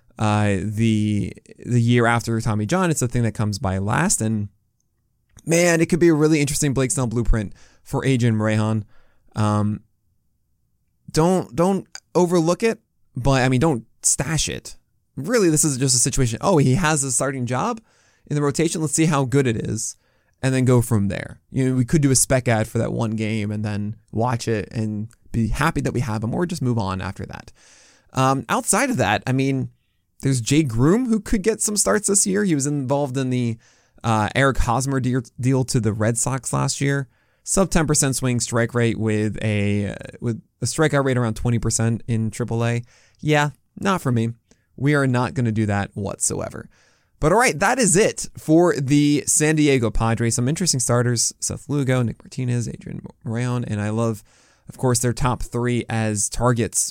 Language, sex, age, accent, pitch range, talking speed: English, male, 20-39, American, 110-145 Hz, 190 wpm